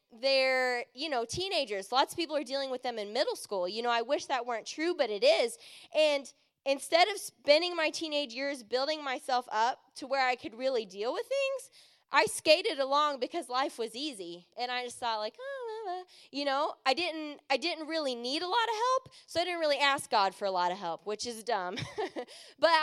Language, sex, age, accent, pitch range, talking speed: English, female, 10-29, American, 245-330 Hz, 215 wpm